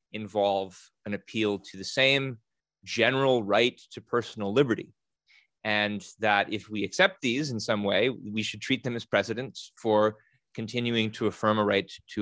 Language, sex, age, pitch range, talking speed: English, male, 30-49, 110-135 Hz, 160 wpm